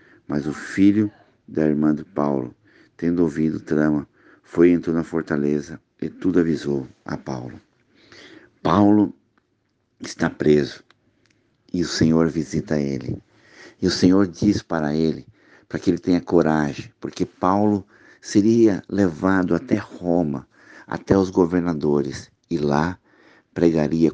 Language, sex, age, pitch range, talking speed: Portuguese, male, 60-79, 75-90 Hz, 130 wpm